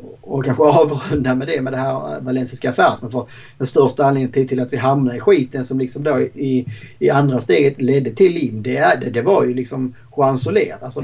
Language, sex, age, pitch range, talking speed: Swedish, male, 30-49, 125-140 Hz, 225 wpm